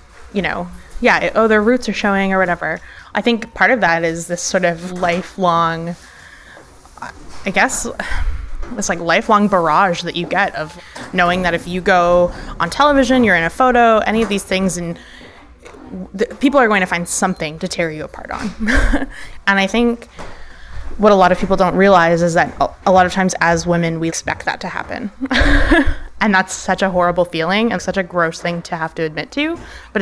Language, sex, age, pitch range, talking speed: English, female, 20-39, 175-225 Hz, 195 wpm